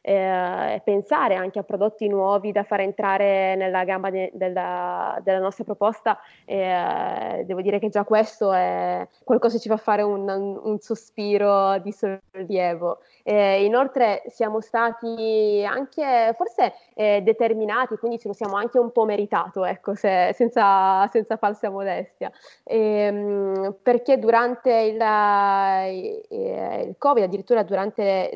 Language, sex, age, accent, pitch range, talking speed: Italian, female, 20-39, native, 195-225 Hz, 145 wpm